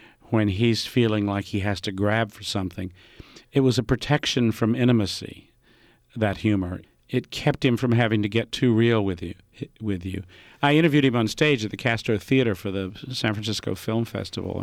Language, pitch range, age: English, 105-130 Hz, 50-69